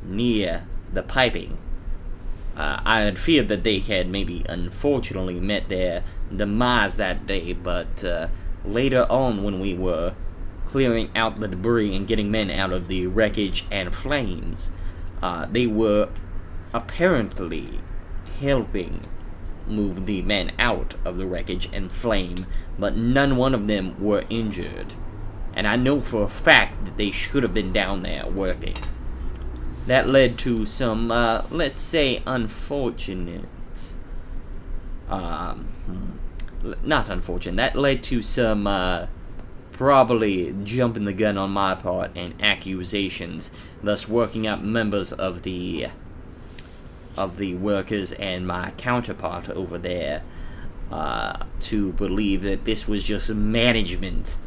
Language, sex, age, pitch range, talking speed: English, male, 20-39, 90-110 Hz, 130 wpm